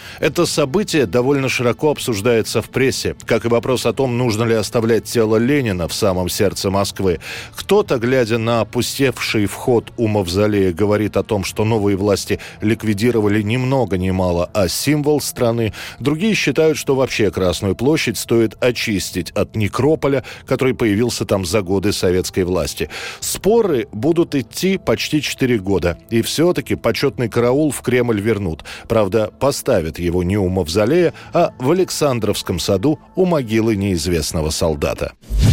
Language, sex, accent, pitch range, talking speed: Russian, male, native, 105-140 Hz, 145 wpm